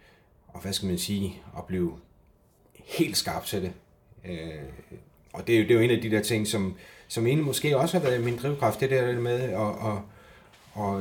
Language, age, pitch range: Danish, 30-49, 95-120 Hz